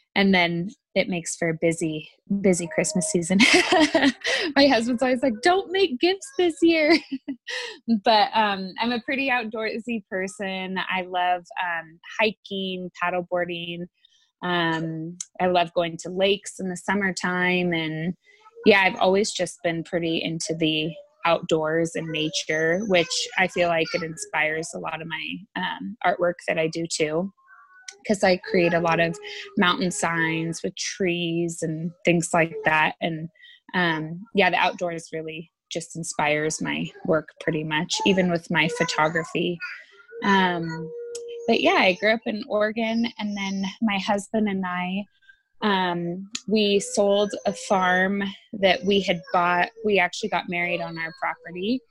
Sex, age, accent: female, 20-39, American